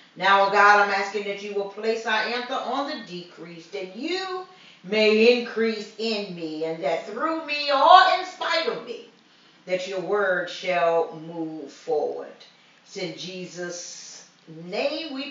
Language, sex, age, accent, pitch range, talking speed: English, female, 40-59, American, 155-195 Hz, 155 wpm